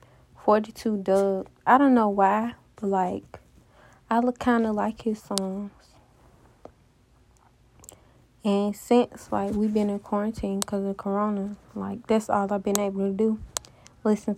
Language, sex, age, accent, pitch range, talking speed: English, female, 20-39, American, 195-220 Hz, 140 wpm